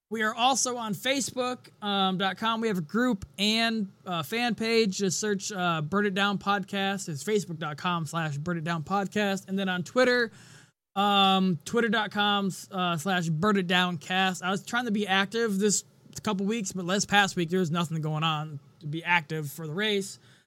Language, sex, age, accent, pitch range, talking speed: English, male, 20-39, American, 175-210 Hz, 190 wpm